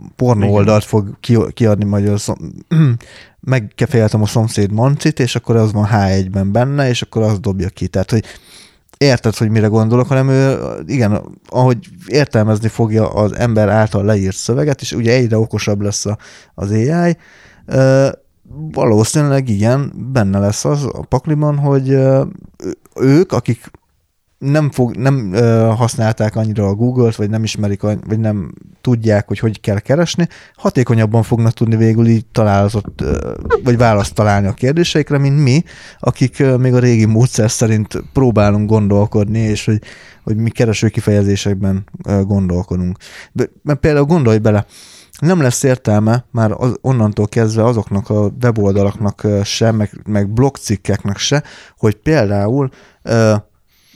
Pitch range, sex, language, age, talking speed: 105-130 Hz, male, Hungarian, 20-39, 140 wpm